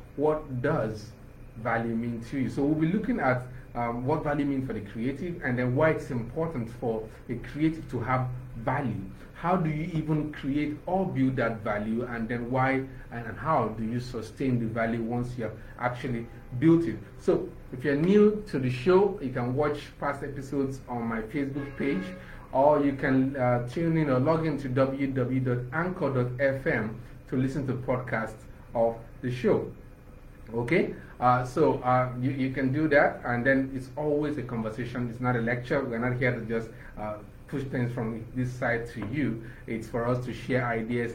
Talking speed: 185 wpm